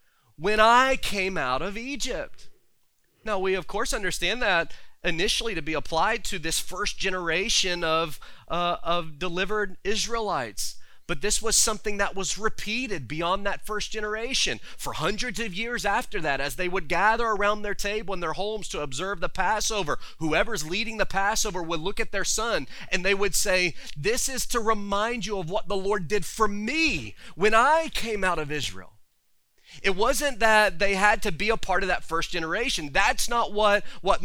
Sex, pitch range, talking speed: male, 175-220 Hz, 180 wpm